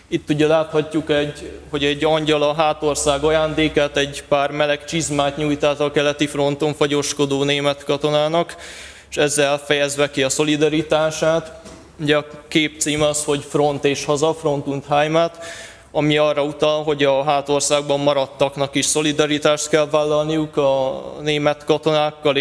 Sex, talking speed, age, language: male, 140 wpm, 20-39, Hungarian